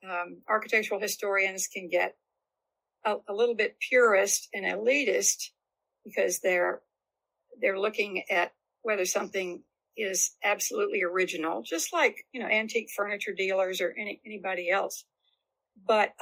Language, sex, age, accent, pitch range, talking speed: English, female, 60-79, American, 190-245 Hz, 125 wpm